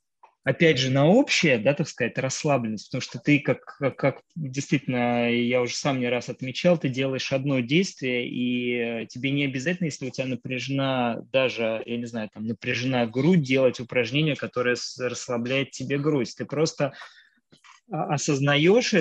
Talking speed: 150 wpm